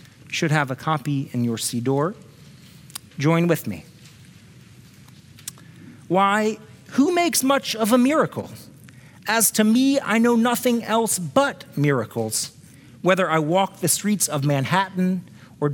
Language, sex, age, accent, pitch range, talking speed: English, male, 40-59, American, 145-195 Hz, 130 wpm